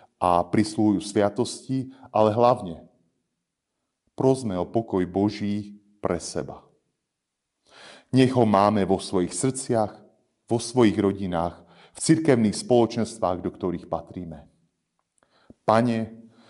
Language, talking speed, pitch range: Slovak, 100 wpm, 90-115 Hz